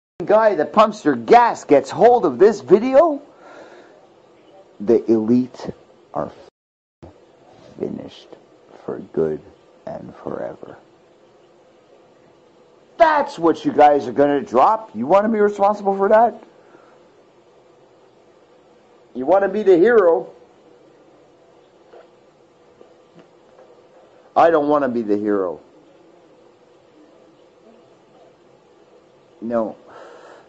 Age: 50-69